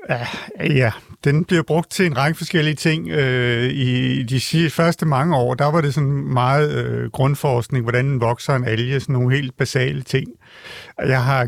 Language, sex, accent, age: Danish, male, native, 60-79